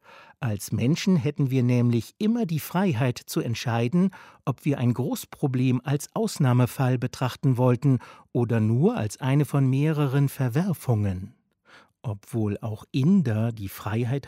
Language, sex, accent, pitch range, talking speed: German, male, German, 115-145 Hz, 125 wpm